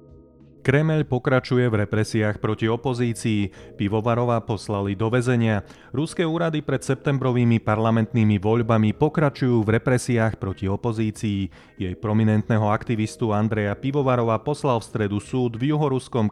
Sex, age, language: male, 30-49, Slovak